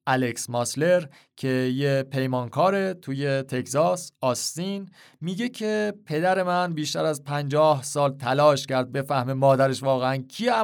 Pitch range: 130-170 Hz